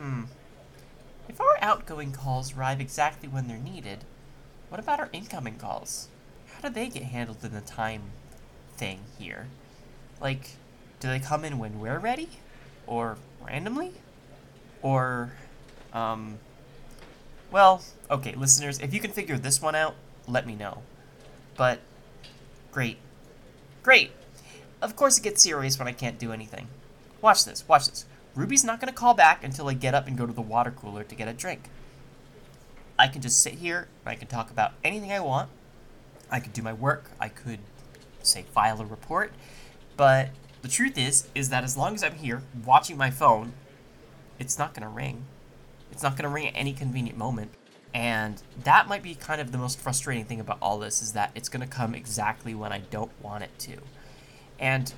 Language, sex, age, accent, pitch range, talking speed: English, male, 10-29, American, 115-140 Hz, 180 wpm